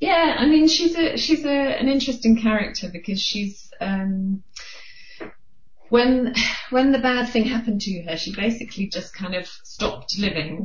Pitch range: 175-225 Hz